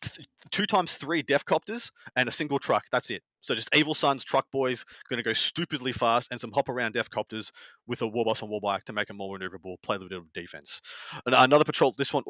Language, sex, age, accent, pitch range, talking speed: English, male, 20-39, Australian, 115-155 Hz, 240 wpm